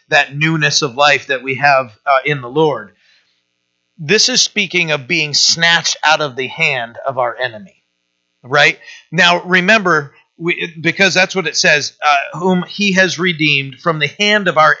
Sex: male